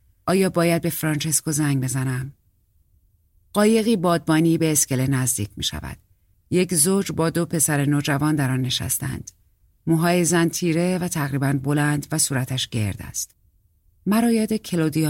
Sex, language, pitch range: female, Persian, 105-165 Hz